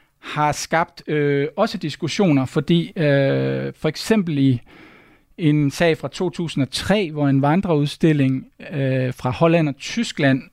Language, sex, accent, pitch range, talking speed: Danish, male, native, 140-170 Hz, 125 wpm